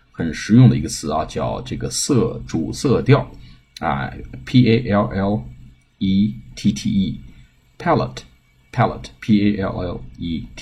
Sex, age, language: male, 50-69, Chinese